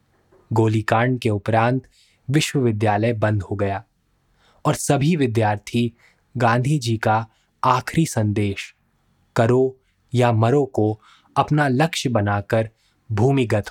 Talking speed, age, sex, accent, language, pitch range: 100 wpm, 20-39, male, native, Hindi, 110-130 Hz